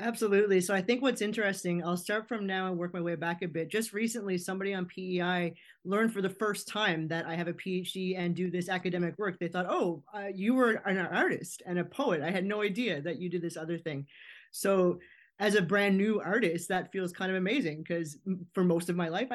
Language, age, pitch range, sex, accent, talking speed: English, 30-49, 170-205 Hz, male, American, 235 wpm